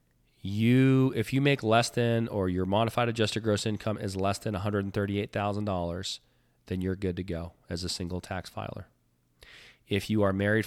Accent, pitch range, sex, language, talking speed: American, 95-110 Hz, male, English, 170 wpm